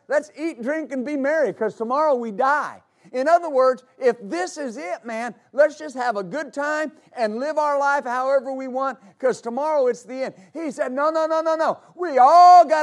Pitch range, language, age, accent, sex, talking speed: 240-310 Hz, English, 50-69, American, male, 215 wpm